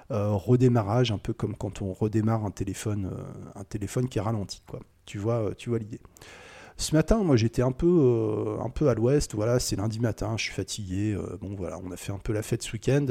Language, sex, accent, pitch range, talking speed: French, male, French, 105-130 Hz, 215 wpm